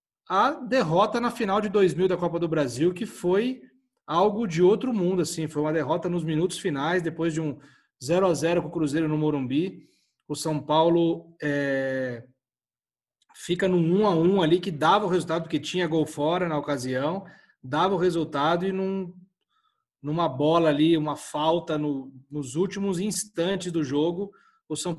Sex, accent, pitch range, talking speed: male, Brazilian, 145-185 Hz, 165 wpm